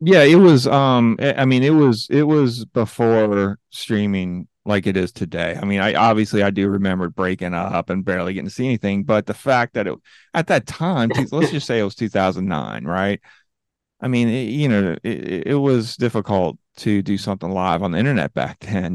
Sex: male